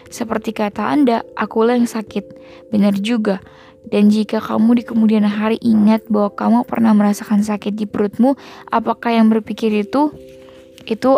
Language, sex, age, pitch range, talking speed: Indonesian, female, 10-29, 210-235 Hz, 145 wpm